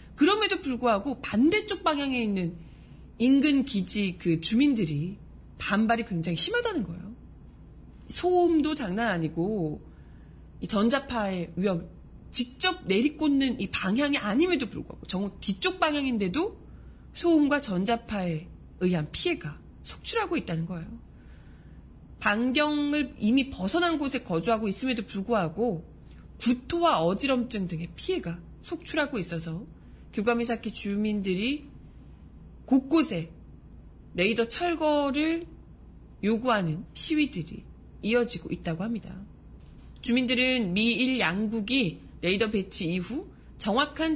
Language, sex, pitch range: Korean, female, 180-275 Hz